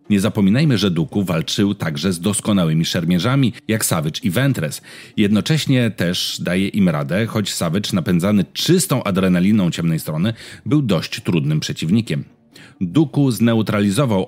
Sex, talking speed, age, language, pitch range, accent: male, 130 wpm, 40-59, Polish, 95-140 Hz, native